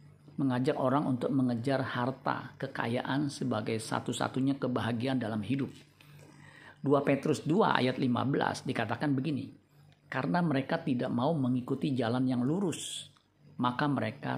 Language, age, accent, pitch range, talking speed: Indonesian, 50-69, native, 125-145 Hz, 115 wpm